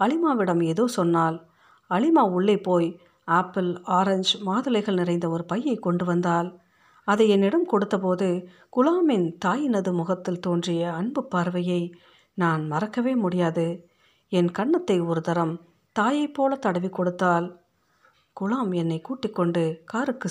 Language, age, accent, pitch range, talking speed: Tamil, 50-69, native, 170-215 Hz, 110 wpm